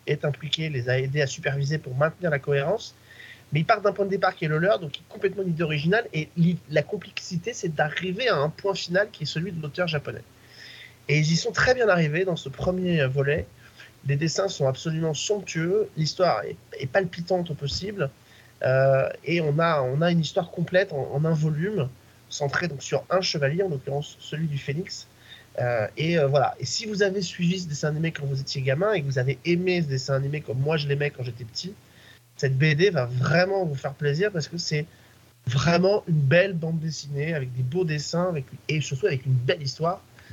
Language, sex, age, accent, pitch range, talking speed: French, male, 30-49, French, 135-175 Hz, 205 wpm